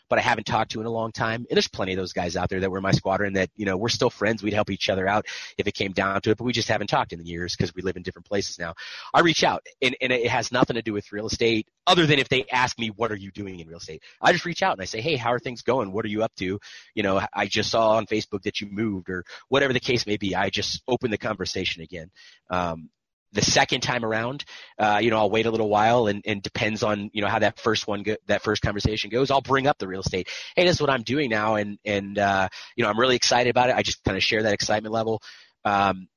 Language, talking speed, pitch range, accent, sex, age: English, 295 wpm, 100-120 Hz, American, male, 30-49